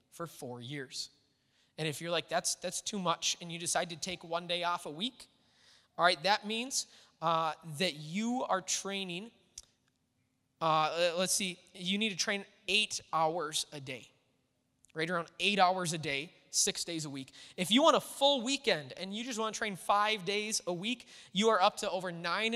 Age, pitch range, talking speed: 20-39, 170-220 Hz, 195 wpm